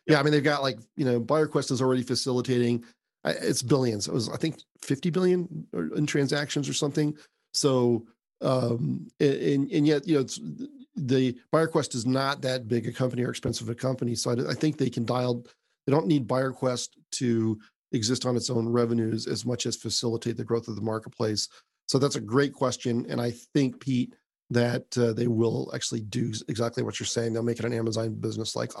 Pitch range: 120-140 Hz